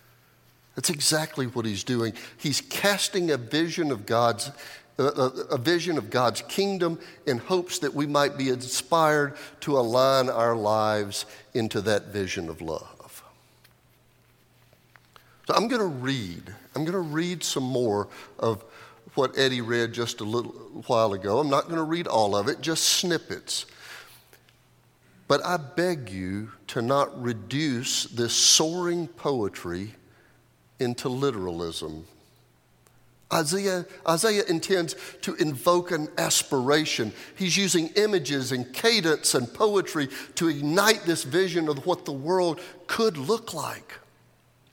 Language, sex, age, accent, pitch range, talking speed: English, male, 50-69, American, 120-170 Hz, 135 wpm